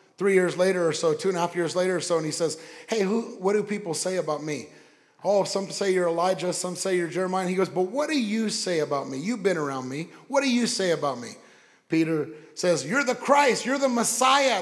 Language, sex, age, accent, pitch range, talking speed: English, male, 30-49, American, 175-220 Hz, 250 wpm